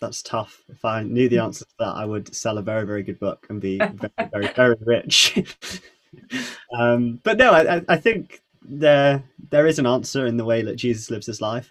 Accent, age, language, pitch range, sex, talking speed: British, 20-39, English, 110-120 Hz, male, 215 wpm